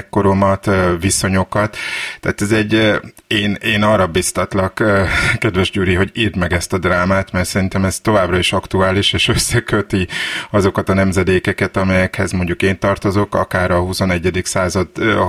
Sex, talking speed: male, 140 wpm